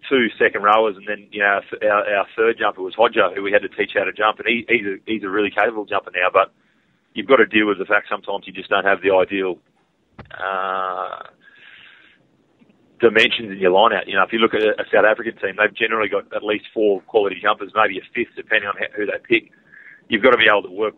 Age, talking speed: 30-49, 250 wpm